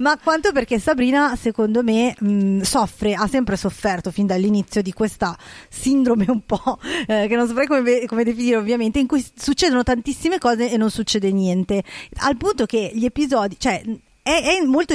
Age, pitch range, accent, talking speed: 20-39, 200-255 Hz, native, 175 wpm